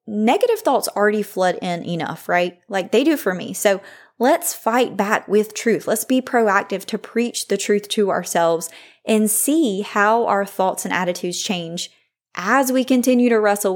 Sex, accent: female, American